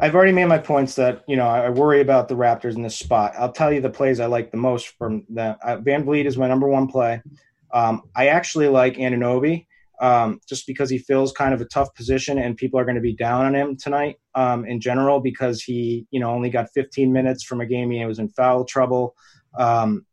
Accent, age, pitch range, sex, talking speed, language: American, 30-49, 115-135 Hz, male, 240 wpm, English